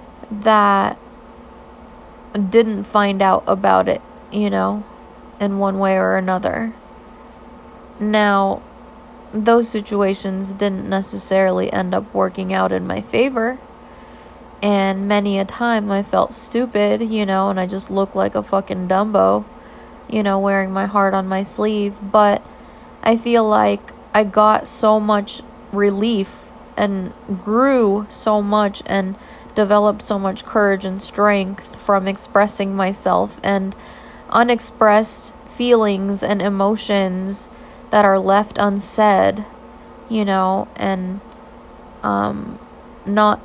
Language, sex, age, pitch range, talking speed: English, female, 20-39, 195-215 Hz, 120 wpm